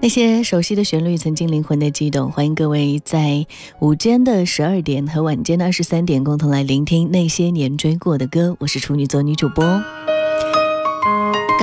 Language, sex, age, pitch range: Chinese, female, 20-39, 145-185 Hz